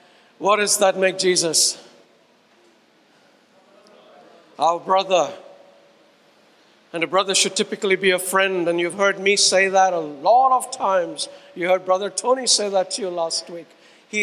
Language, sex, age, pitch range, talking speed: English, male, 60-79, 175-230 Hz, 150 wpm